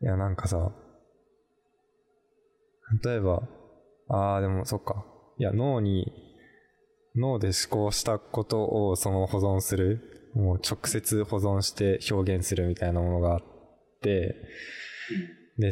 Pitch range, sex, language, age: 95-125 Hz, male, Japanese, 20-39